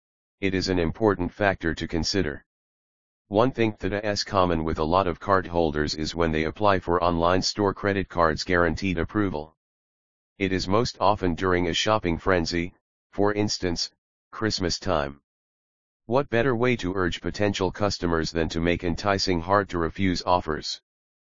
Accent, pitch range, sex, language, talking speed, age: American, 80-105 Hz, male, English, 155 wpm, 40-59